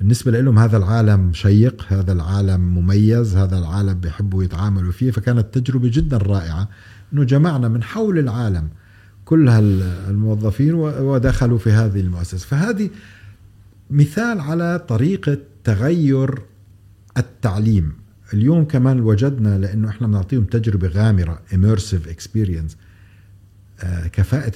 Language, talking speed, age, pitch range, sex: Arabic, 110 wpm, 50-69, 95-115 Hz, male